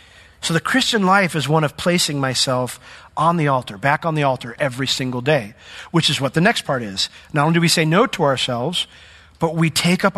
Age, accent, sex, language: 40-59, American, male, English